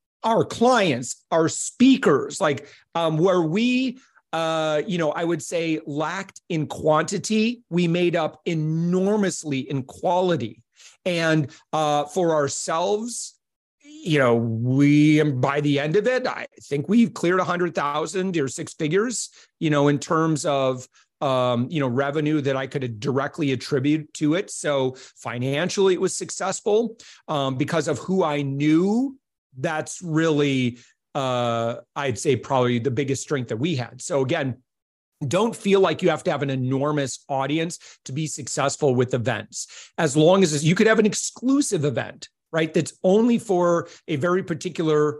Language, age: English, 40-59